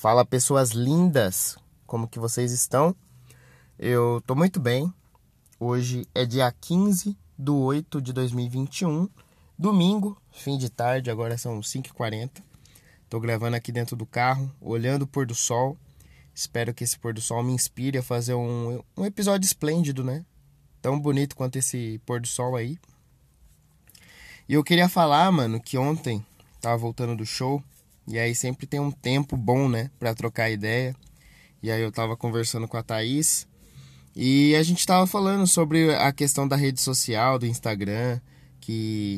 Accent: Brazilian